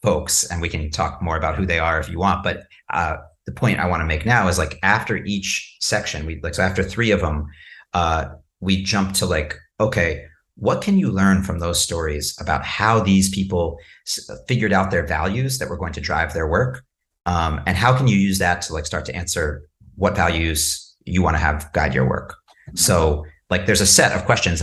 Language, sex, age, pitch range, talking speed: English, male, 40-59, 80-100 Hz, 220 wpm